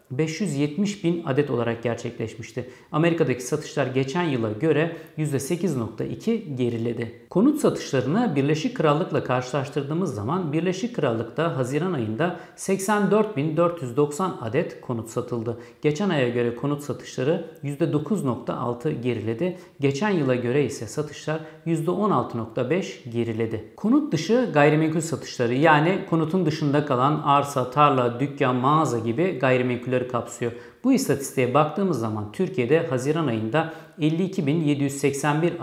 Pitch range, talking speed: 125-165 Hz, 105 wpm